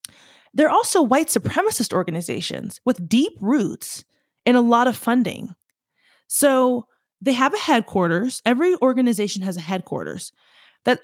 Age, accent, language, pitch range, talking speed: 20-39, American, English, 205-255 Hz, 130 wpm